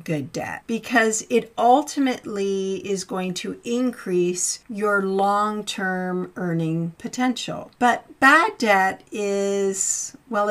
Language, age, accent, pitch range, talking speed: English, 50-69, American, 185-230 Hz, 110 wpm